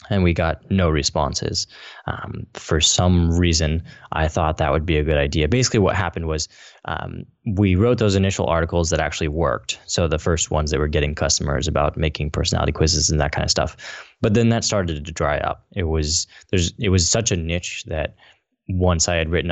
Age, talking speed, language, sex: 20-39, 205 wpm, English, male